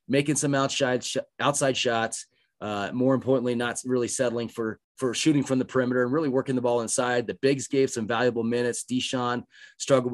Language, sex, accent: English, male, American